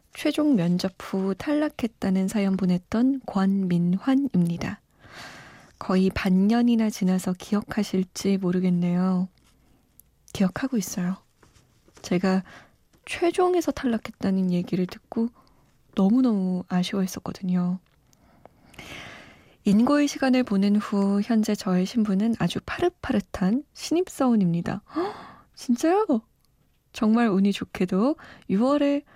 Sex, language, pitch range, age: female, Korean, 185-250 Hz, 20-39